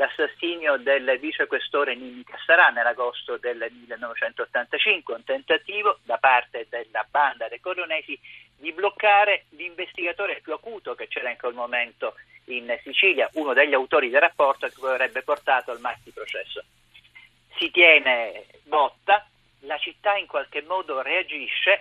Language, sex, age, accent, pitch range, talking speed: Italian, male, 50-69, native, 135-225 Hz, 130 wpm